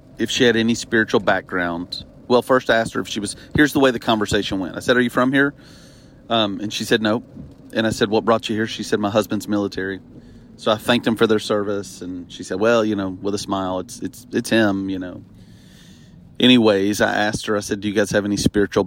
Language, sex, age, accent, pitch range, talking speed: English, male, 30-49, American, 100-125 Hz, 245 wpm